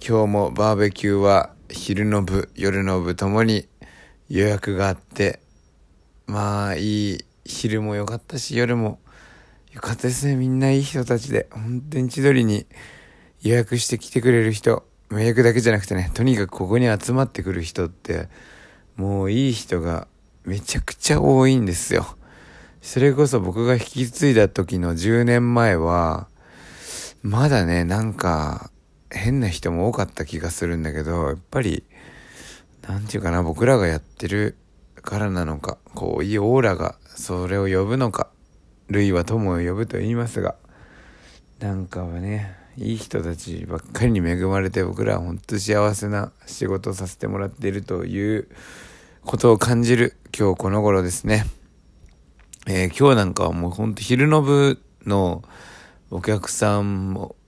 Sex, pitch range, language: male, 90-120 Hz, Japanese